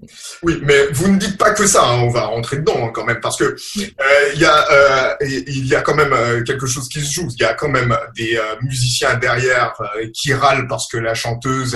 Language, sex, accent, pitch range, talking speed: French, male, French, 120-145 Hz, 245 wpm